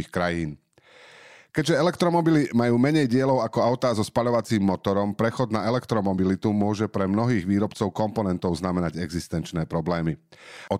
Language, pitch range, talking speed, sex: Slovak, 95-120 Hz, 130 wpm, male